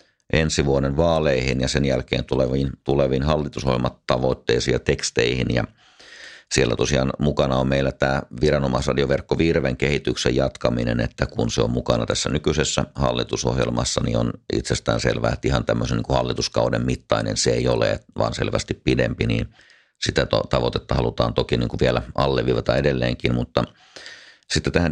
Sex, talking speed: male, 145 wpm